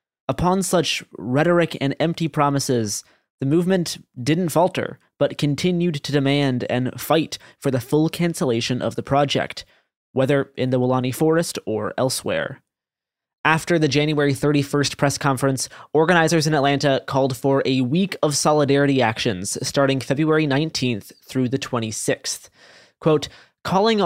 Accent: American